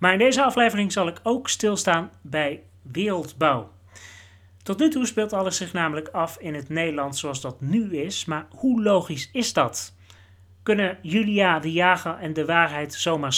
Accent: Dutch